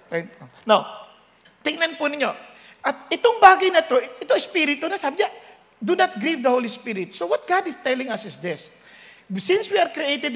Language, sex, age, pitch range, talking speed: English, male, 50-69, 250-375 Hz, 185 wpm